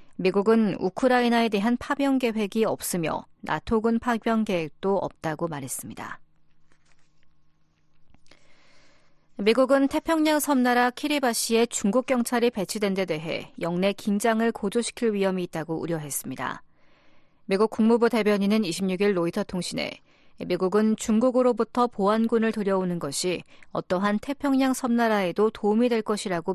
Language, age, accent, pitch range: Korean, 40-59, native, 180-235 Hz